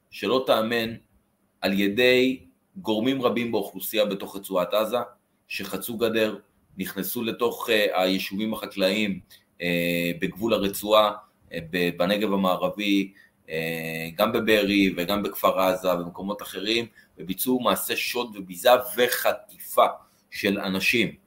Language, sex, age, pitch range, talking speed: Hebrew, male, 30-49, 95-110 Hz, 105 wpm